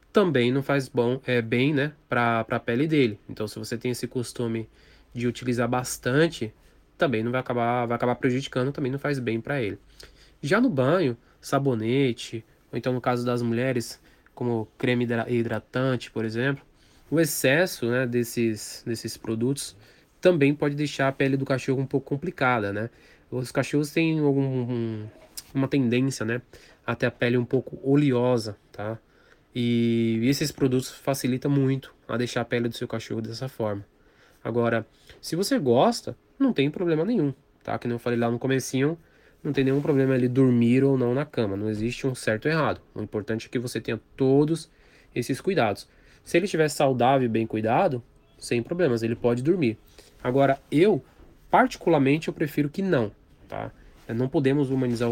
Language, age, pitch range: Portuguese, 20-39, 115-140 Hz